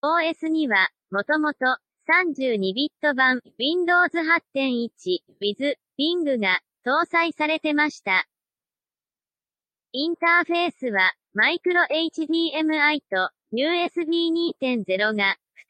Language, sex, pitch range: Japanese, male, 230-330 Hz